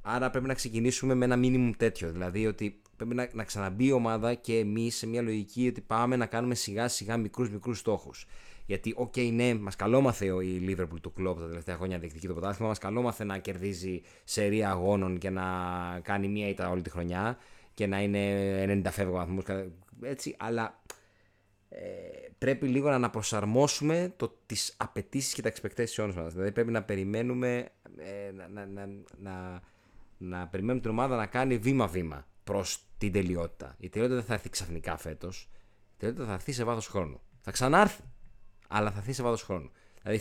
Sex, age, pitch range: male, 20-39, 95-125 Hz